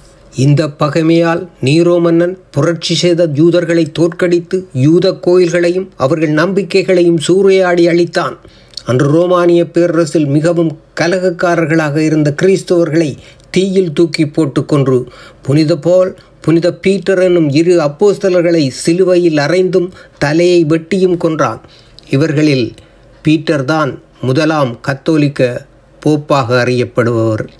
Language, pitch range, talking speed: Tamil, 145-180 Hz, 90 wpm